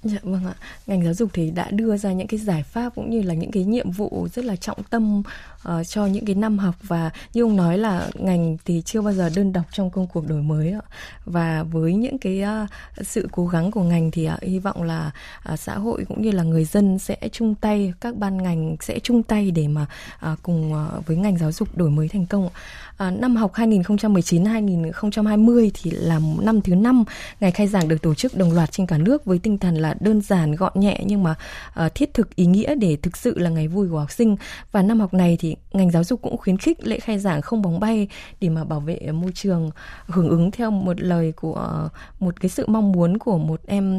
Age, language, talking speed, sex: 20-39, Vietnamese, 230 wpm, female